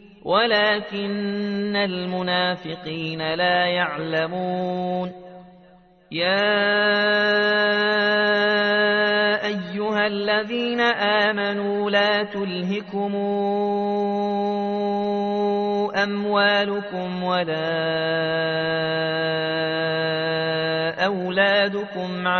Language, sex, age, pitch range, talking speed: Arabic, male, 30-49, 180-205 Hz, 35 wpm